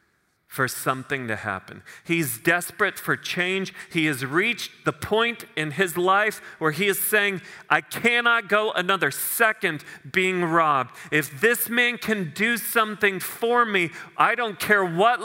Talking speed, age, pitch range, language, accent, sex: 155 wpm, 40-59, 145-210 Hz, English, American, male